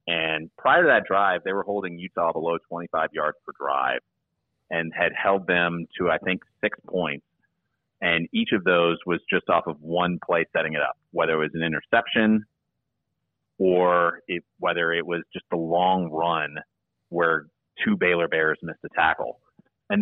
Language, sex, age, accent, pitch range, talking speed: English, male, 30-49, American, 80-95 Hz, 170 wpm